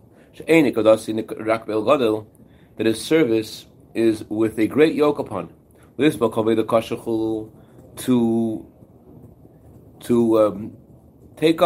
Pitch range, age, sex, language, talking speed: 115-155 Hz, 30-49, male, English, 65 wpm